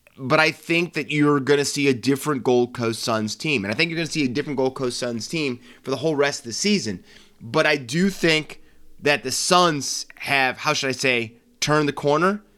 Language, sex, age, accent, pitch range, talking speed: English, male, 30-49, American, 125-175 Hz, 235 wpm